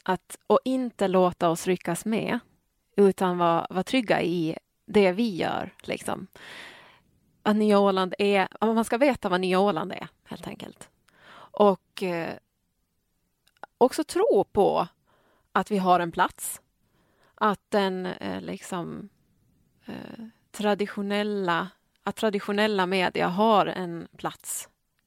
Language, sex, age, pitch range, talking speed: Swedish, female, 30-49, 180-215 Hz, 115 wpm